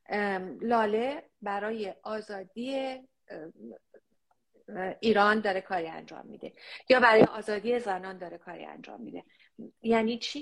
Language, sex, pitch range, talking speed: English, female, 195-255 Hz, 110 wpm